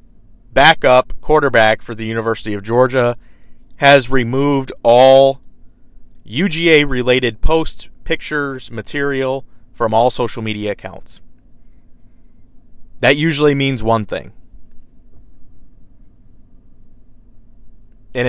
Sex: male